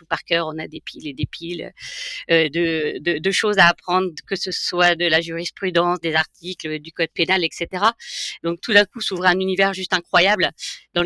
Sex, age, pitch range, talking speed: female, 50-69, 165-195 Hz, 205 wpm